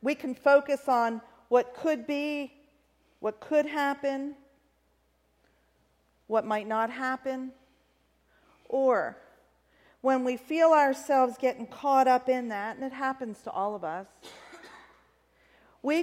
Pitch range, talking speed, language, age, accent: 220-280 Hz, 120 wpm, English, 50-69, American